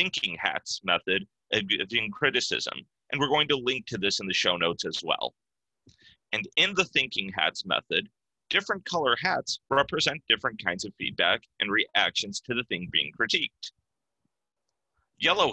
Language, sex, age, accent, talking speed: English, male, 30-49, American, 155 wpm